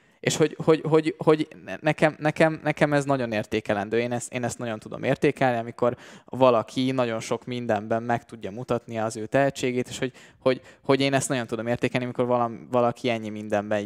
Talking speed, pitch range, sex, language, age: 160 wpm, 115-140 Hz, male, Hungarian, 20-39